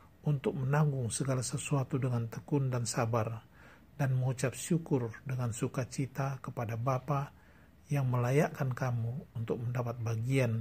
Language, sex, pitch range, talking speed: Indonesian, male, 110-135 Hz, 120 wpm